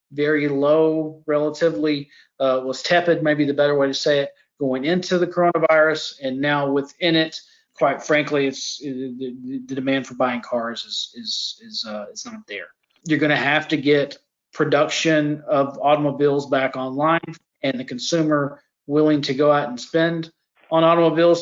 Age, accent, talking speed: 40-59, American, 170 wpm